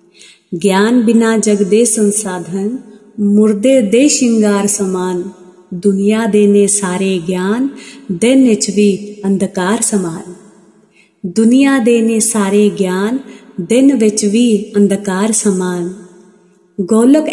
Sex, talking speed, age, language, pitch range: female, 95 wpm, 30-49, Punjabi, 190-225 Hz